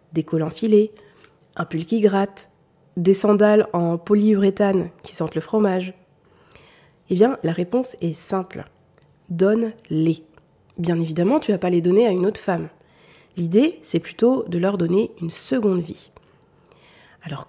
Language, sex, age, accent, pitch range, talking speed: French, female, 30-49, French, 175-225 Hz, 150 wpm